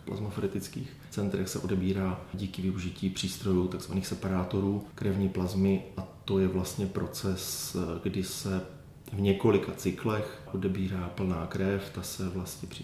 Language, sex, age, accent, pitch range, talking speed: Czech, male, 30-49, native, 95-100 Hz, 130 wpm